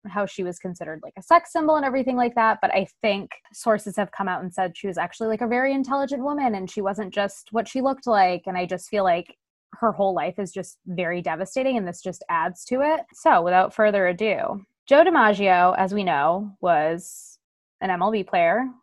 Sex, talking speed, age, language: female, 215 wpm, 20-39, English